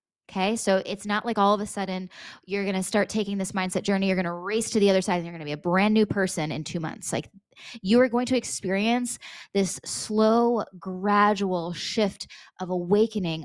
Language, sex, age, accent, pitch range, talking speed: English, female, 20-39, American, 180-215 Hz, 215 wpm